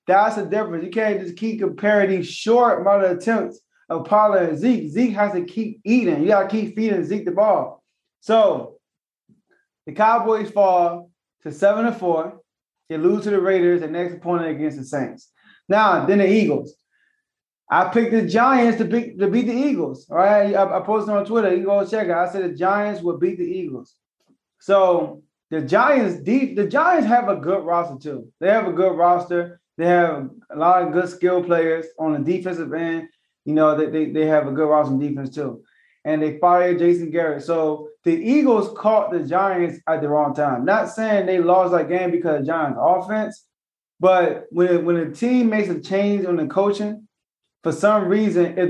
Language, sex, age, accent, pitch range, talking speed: English, male, 20-39, American, 165-210 Hz, 195 wpm